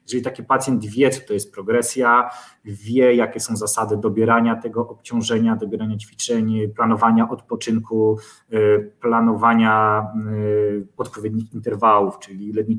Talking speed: 115 wpm